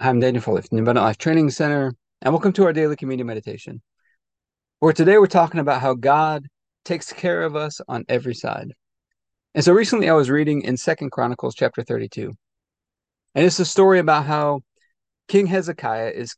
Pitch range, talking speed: 130-165 Hz, 180 wpm